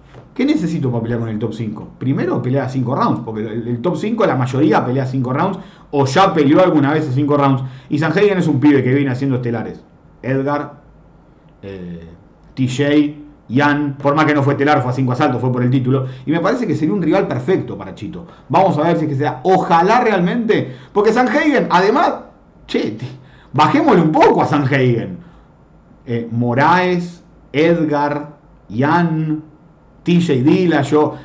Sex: male